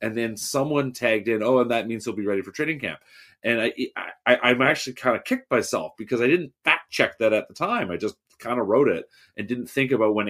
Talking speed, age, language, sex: 260 wpm, 30-49, English, male